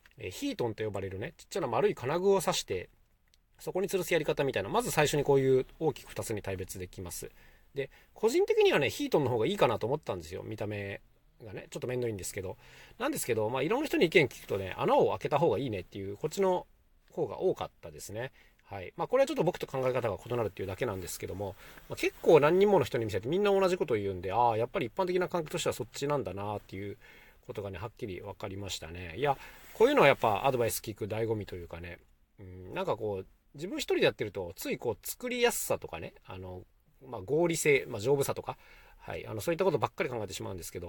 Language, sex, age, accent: Japanese, male, 40-59, native